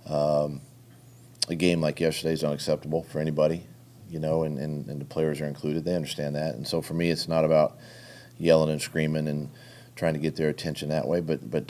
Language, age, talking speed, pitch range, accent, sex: English, 40-59, 205 wpm, 75-105 Hz, American, male